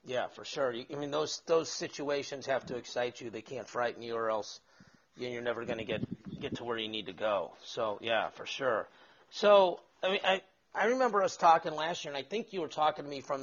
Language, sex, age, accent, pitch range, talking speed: English, male, 40-59, American, 125-150 Hz, 235 wpm